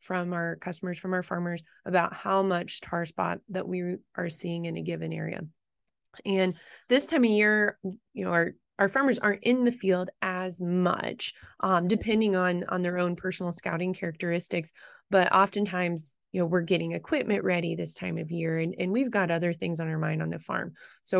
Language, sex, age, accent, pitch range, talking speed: English, female, 20-39, American, 170-195 Hz, 195 wpm